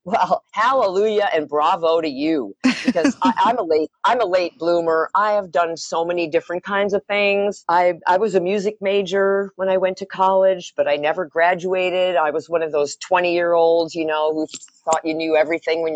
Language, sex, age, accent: English, female, 50-69, American